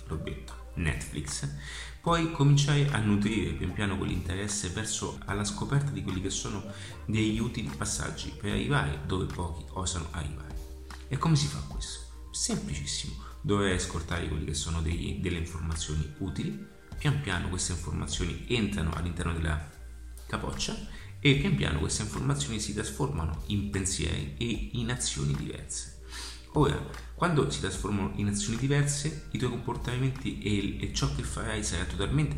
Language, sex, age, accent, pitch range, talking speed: Italian, male, 30-49, native, 75-105 Hz, 145 wpm